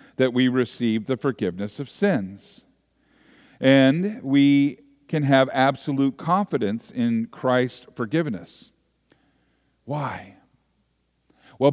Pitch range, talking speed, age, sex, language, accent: 100-140 Hz, 90 wpm, 50-69, male, English, American